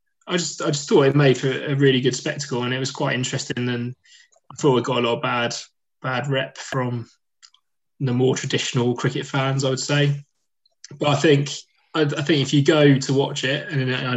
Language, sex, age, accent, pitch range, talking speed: English, male, 20-39, British, 130-145 Hz, 215 wpm